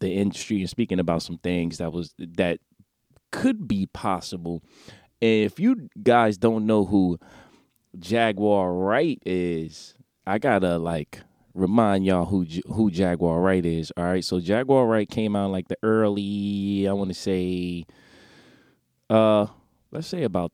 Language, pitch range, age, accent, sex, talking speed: English, 90-115 Hz, 20-39, American, male, 150 wpm